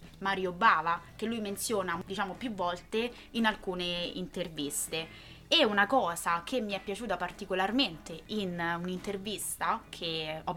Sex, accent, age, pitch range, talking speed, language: female, native, 20-39, 180-225 Hz, 130 wpm, Italian